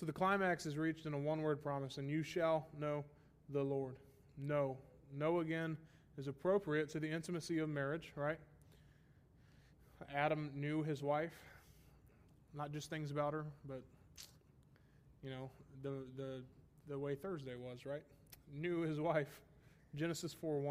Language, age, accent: English, 20-39, American